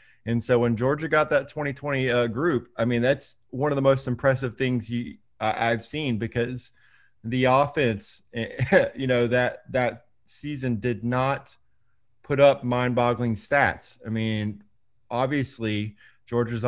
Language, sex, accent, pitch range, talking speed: English, male, American, 115-140 Hz, 145 wpm